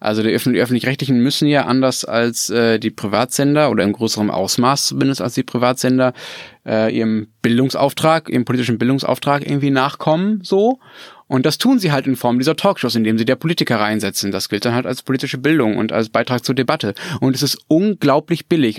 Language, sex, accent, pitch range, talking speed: German, male, German, 115-145 Hz, 190 wpm